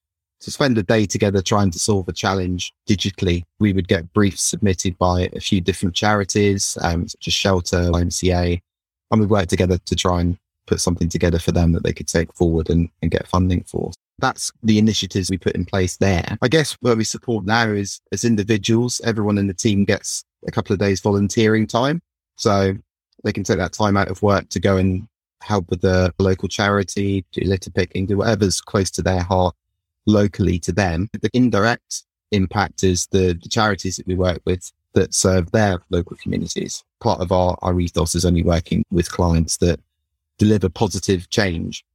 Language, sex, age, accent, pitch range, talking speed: English, male, 20-39, British, 90-105 Hz, 195 wpm